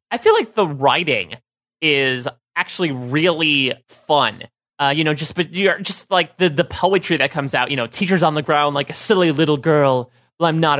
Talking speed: 210 wpm